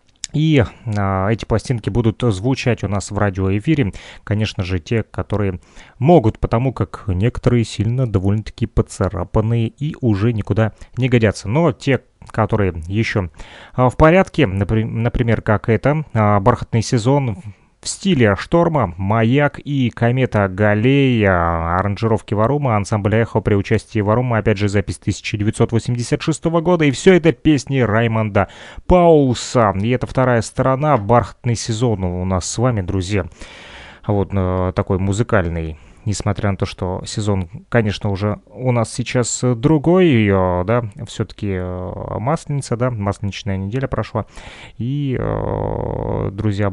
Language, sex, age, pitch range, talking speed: Russian, male, 30-49, 100-125 Hz, 120 wpm